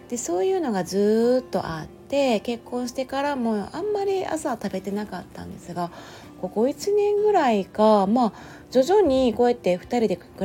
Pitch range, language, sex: 175-245 Hz, Japanese, female